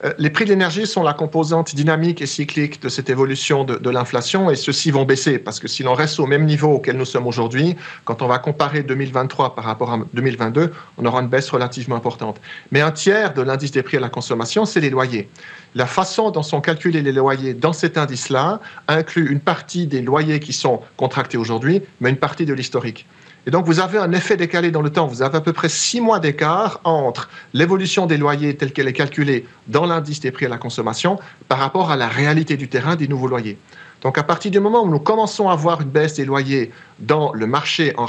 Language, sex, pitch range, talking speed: French, male, 130-165 Hz, 230 wpm